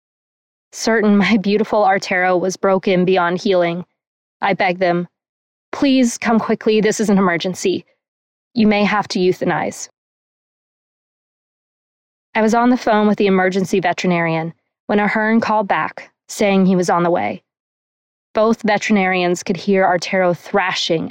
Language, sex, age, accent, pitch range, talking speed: English, female, 20-39, American, 185-215 Hz, 135 wpm